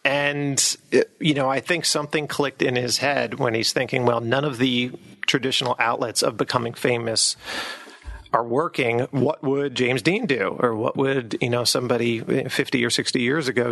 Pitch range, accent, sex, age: 120-145 Hz, American, male, 40-59